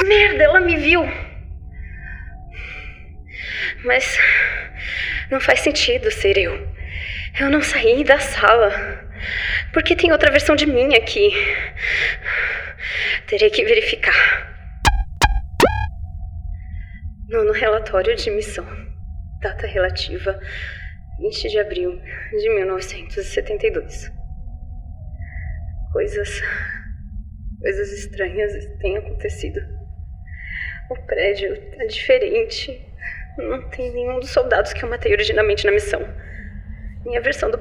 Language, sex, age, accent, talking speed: Portuguese, female, 20-39, Brazilian, 95 wpm